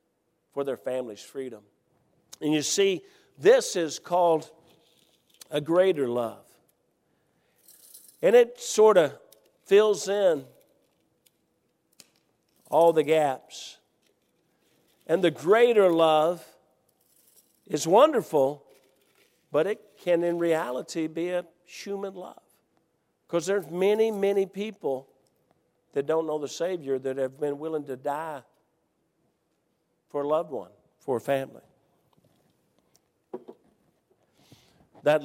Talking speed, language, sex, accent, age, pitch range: 105 wpm, English, male, American, 50-69, 135-180 Hz